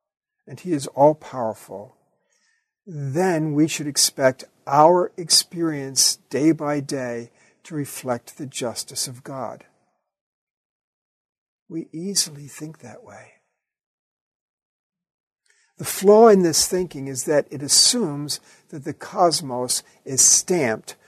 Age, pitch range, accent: 50-69, 130-175 Hz, American